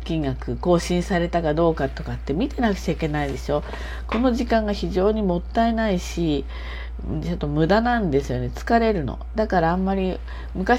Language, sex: Japanese, female